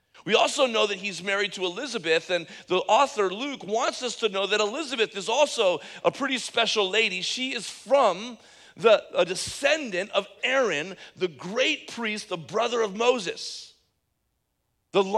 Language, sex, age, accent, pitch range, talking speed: English, male, 40-59, American, 150-230 Hz, 155 wpm